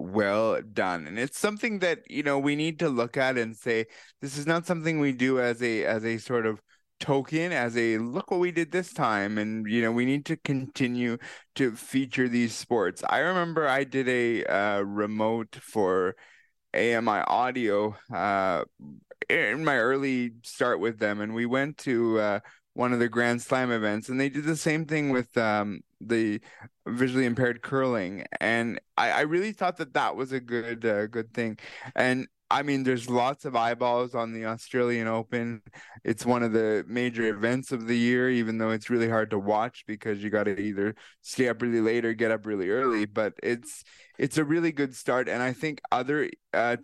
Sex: male